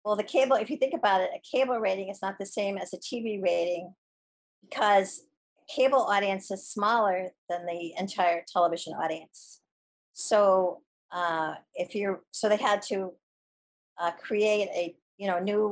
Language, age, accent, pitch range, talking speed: English, 50-69, American, 170-200 Hz, 155 wpm